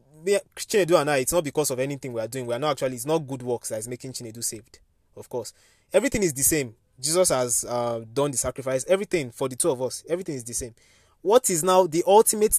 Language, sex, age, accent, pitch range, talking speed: English, male, 20-39, Nigerian, 125-165 Hz, 255 wpm